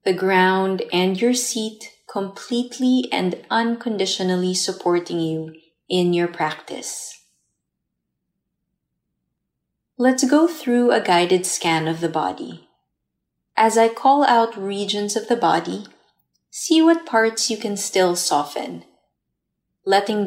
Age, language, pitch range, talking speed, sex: 20-39, English, 170-215 Hz, 115 wpm, female